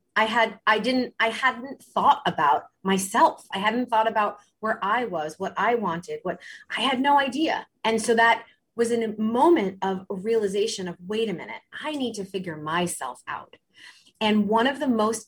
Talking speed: 195 wpm